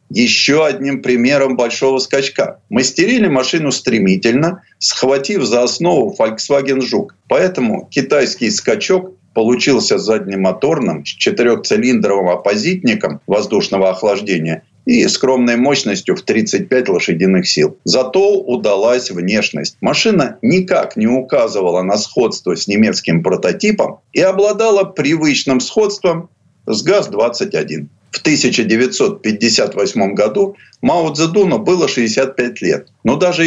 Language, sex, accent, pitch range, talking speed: Russian, male, native, 115-185 Hz, 105 wpm